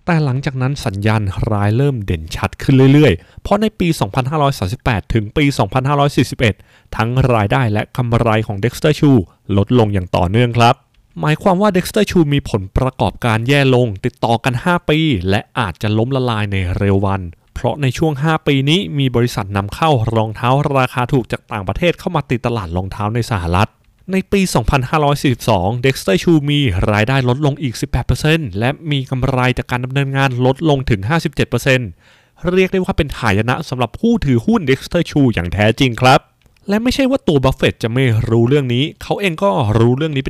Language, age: Thai, 20-39